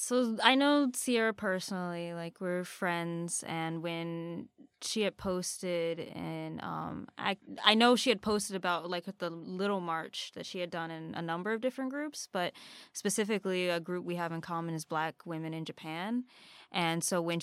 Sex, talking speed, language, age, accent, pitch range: female, 175 wpm, English, 10-29, American, 165-195 Hz